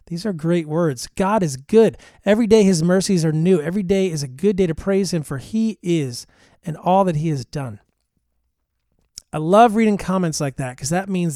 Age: 30-49